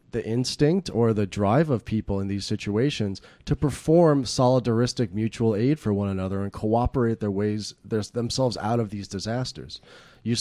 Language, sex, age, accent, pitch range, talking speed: English, male, 30-49, American, 100-125 Hz, 160 wpm